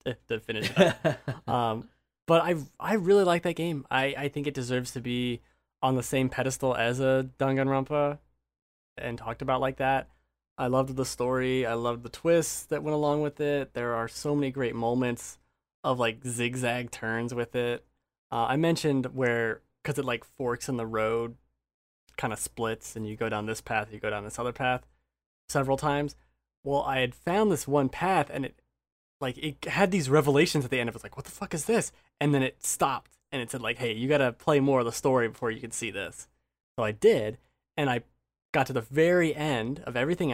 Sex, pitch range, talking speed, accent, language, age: male, 115-145 Hz, 215 wpm, American, English, 20-39